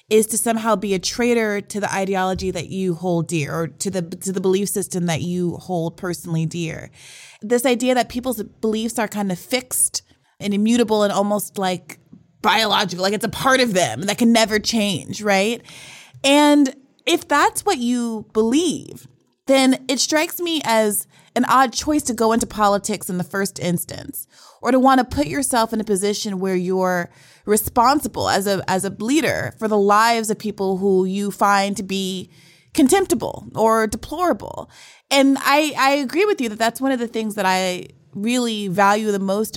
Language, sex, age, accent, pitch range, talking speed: English, female, 20-39, American, 185-235 Hz, 185 wpm